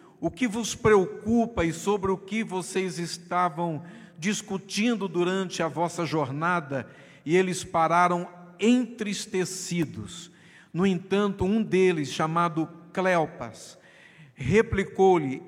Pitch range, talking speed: 155-190 Hz, 100 wpm